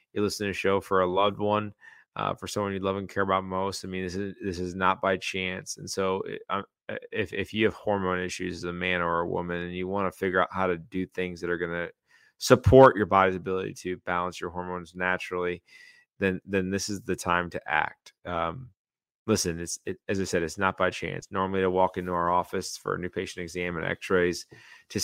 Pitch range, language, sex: 90-100 Hz, English, male